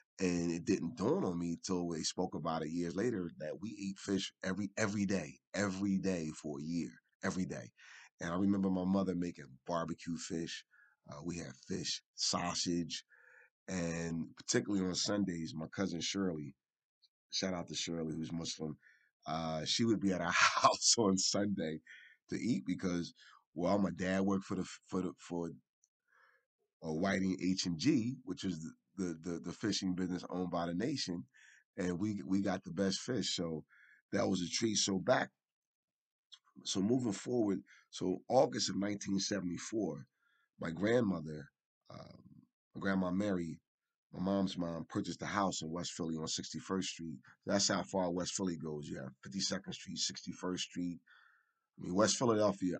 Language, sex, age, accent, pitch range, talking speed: English, male, 30-49, American, 85-100 Hz, 165 wpm